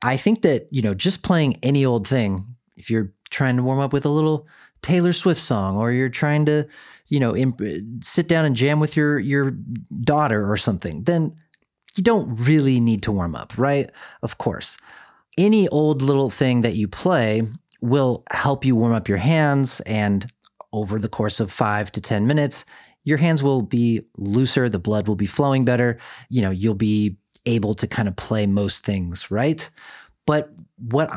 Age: 30-49